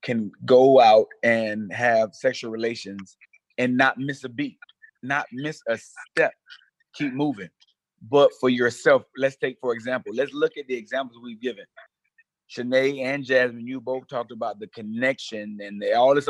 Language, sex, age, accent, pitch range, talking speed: English, male, 30-49, American, 125-180 Hz, 160 wpm